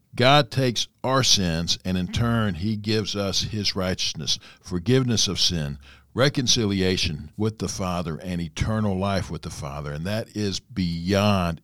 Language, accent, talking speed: English, American, 150 wpm